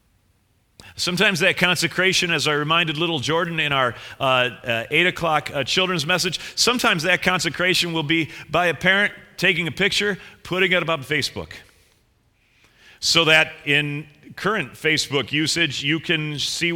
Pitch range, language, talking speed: 105-165 Hz, English, 145 wpm